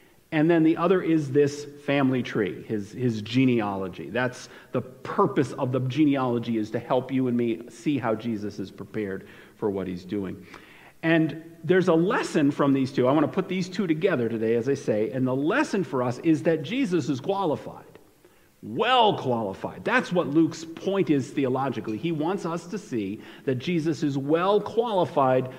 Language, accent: English, American